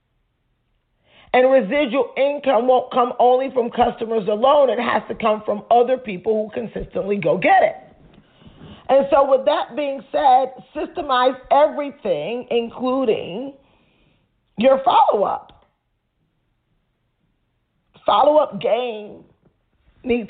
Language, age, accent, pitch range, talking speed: English, 40-59, American, 220-280 Hz, 105 wpm